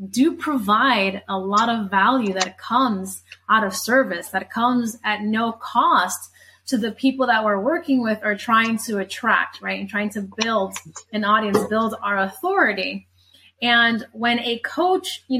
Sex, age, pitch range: female, 20-39, 210-255 Hz